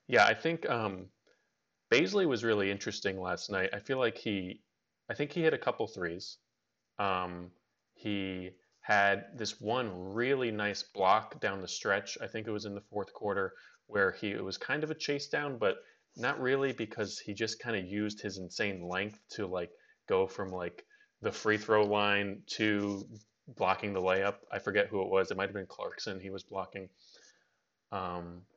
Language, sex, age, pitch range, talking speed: English, male, 20-39, 95-120 Hz, 185 wpm